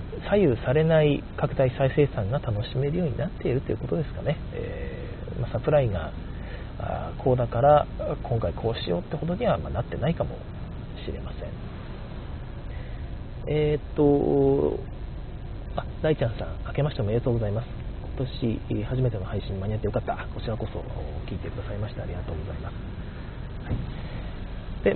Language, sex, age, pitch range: Japanese, male, 40-59, 100-145 Hz